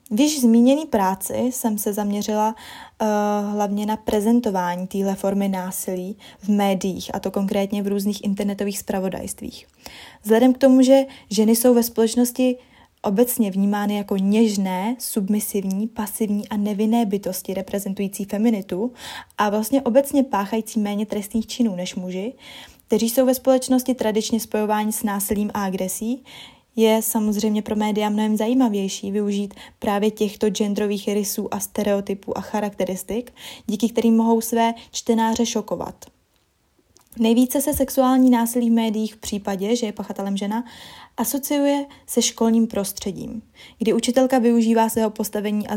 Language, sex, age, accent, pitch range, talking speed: Czech, female, 20-39, native, 200-230 Hz, 135 wpm